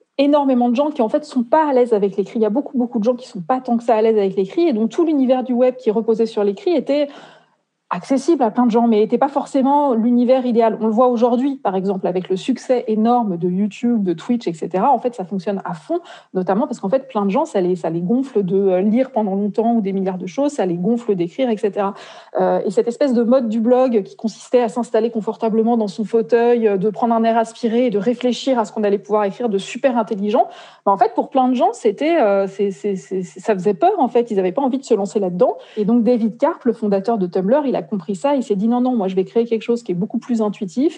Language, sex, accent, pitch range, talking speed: French, female, French, 200-250 Hz, 270 wpm